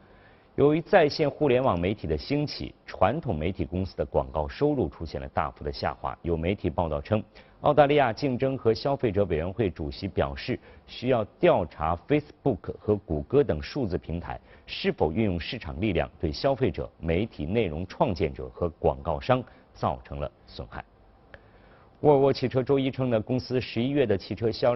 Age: 50-69